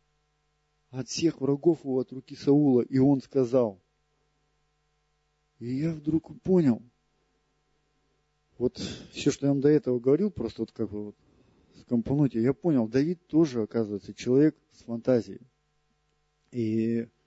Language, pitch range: Russian, 105-155 Hz